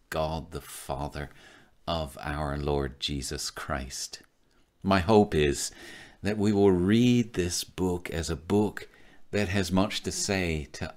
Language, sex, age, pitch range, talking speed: English, male, 50-69, 75-100 Hz, 140 wpm